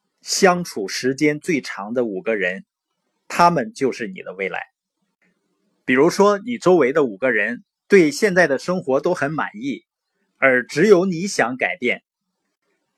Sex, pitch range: male, 140-205 Hz